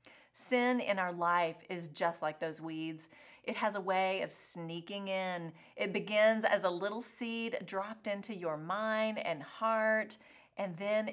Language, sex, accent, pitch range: English, female, American, 170-230 Hz